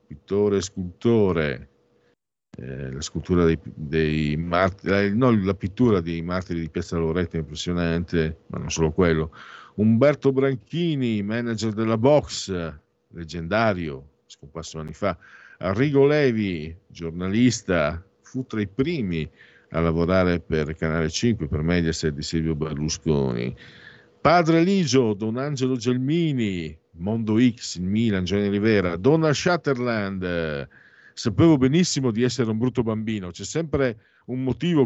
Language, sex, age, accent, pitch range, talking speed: Italian, male, 50-69, native, 80-120 Hz, 125 wpm